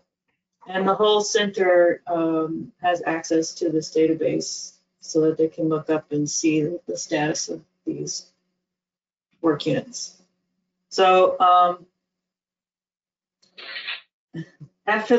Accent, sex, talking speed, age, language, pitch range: American, female, 105 wpm, 30-49, English, 165-190 Hz